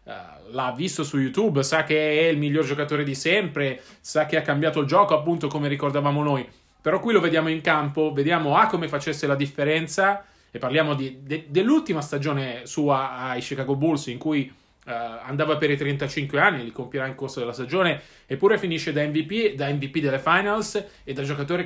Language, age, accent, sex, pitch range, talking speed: Italian, 20-39, native, male, 140-165 Hz, 195 wpm